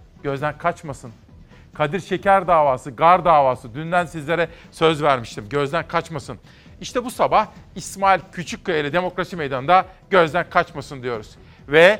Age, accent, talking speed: 40-59, native, 120 wpm